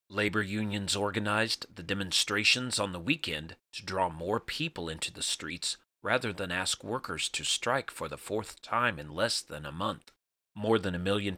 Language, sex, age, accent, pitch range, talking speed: English, male, 30-49, American, 90-115 Hz, 180 wpm